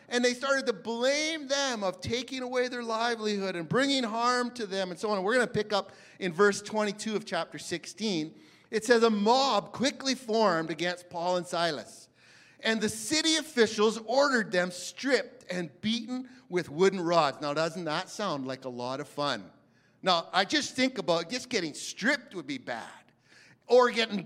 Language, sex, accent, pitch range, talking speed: English, male, American, 190-260 Hz, 185 wpm